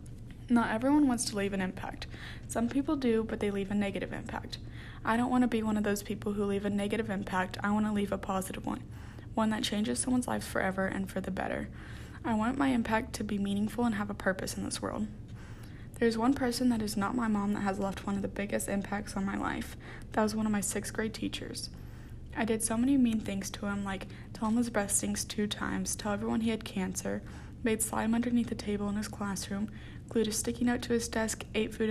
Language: English